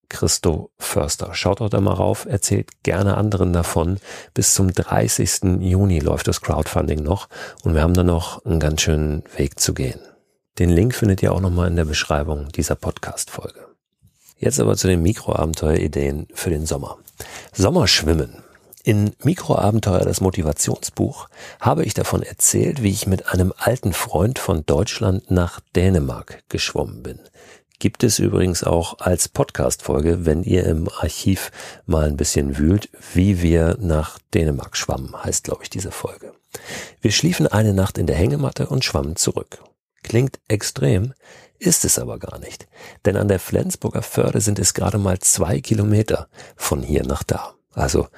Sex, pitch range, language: male, 80-105 Hz, German